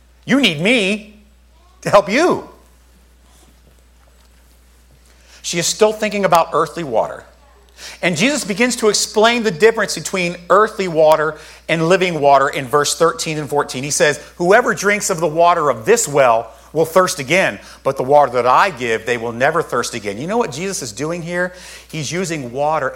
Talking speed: 170 wpm